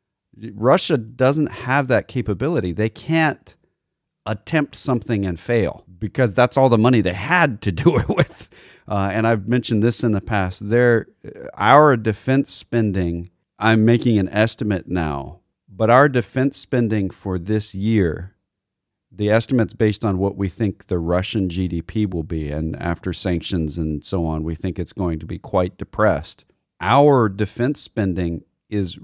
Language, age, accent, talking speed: English, 40-59, American, 155 wpm